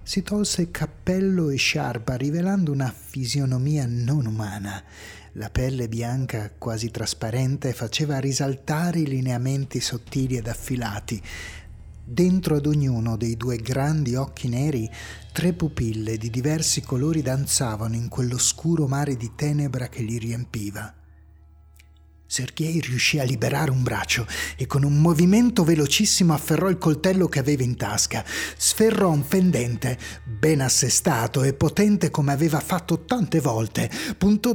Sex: male